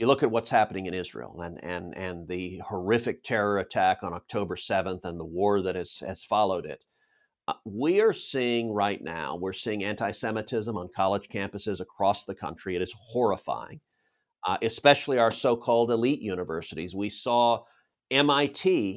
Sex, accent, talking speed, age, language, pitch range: male, American, 165 wpm, 50-69, English, 110-155 Hz